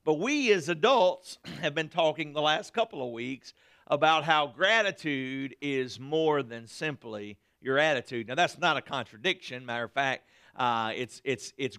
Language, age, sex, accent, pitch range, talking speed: English, 50-69, male, American, 140-185 Hz, 170 wpm